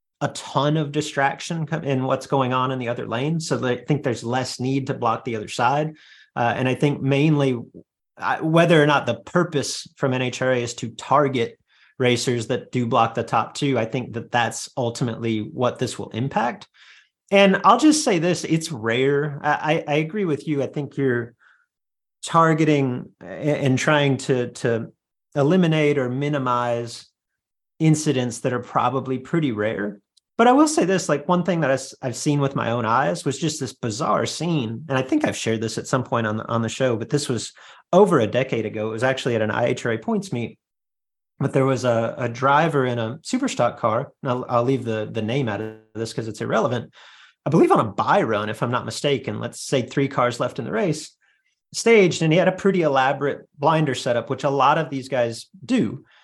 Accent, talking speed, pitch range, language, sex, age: American, 205 wpm, 120-150 Hz, English, male, 30-49